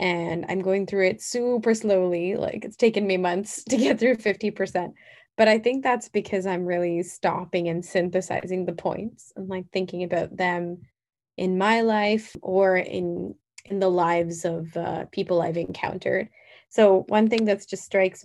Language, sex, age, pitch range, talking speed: English, female, 20-39, 175-200 Hz, 170 wpm